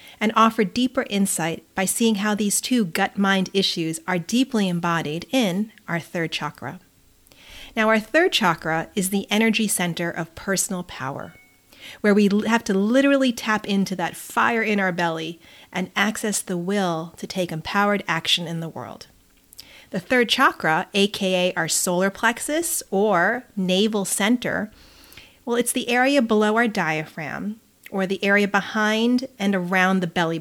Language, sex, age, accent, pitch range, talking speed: English, female, 40-59, American, 180-230 Hz, 150 wpm